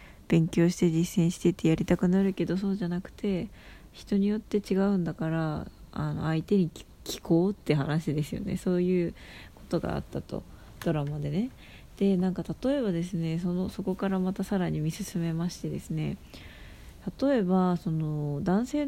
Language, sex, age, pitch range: Japanese, female, 20-39, 155-195 Hz